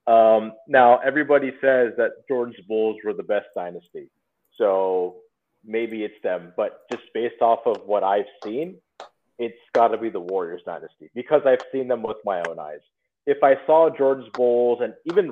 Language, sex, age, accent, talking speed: English, male, 30-49, American, 175 wpm